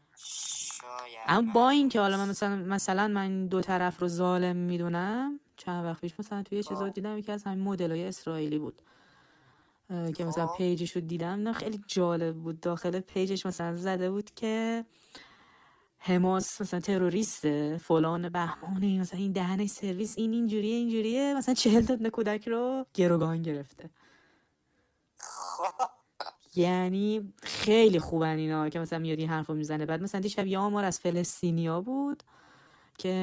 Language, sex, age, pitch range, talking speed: Persian, female, 20-39, 170-220 Hz, 145 wpm